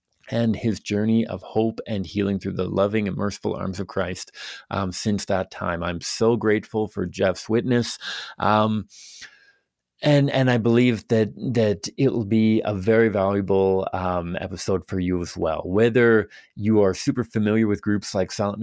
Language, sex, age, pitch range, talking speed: English, male, 30-49, 100-120 Hz, 170 wpm